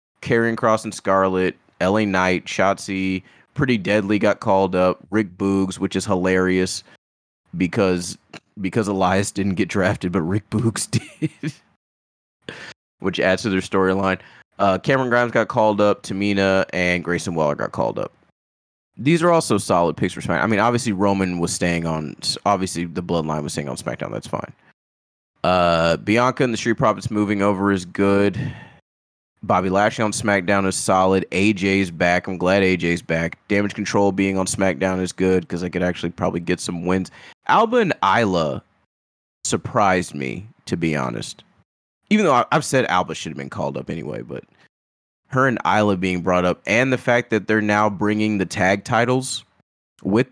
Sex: male